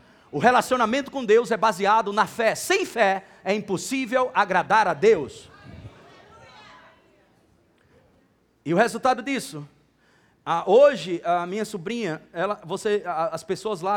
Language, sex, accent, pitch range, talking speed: English, male, Brazilian, 175-225 Hz, 110 wpm